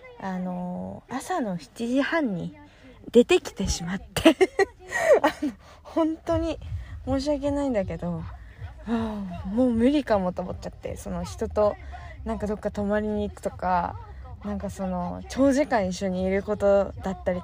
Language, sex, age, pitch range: Japanese, female, 20-39, 185-280 Hz